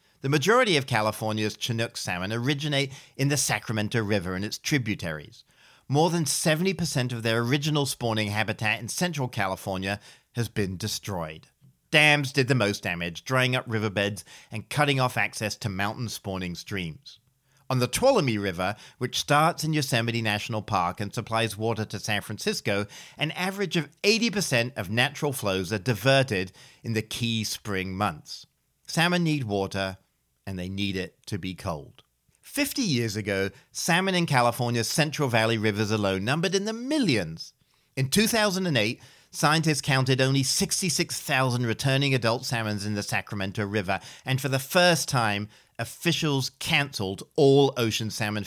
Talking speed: 150 wpm